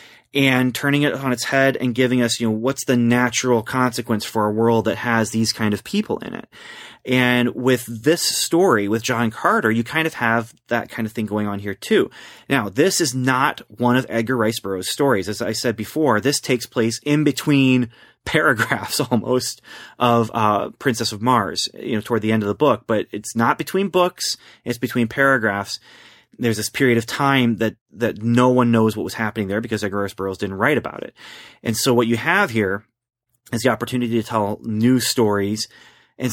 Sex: male